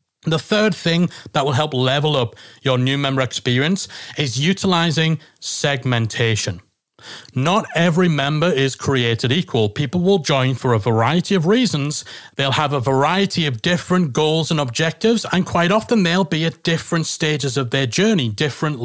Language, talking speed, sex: English, 160 wpm, male